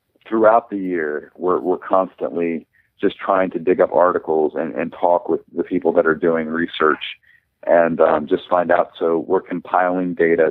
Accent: American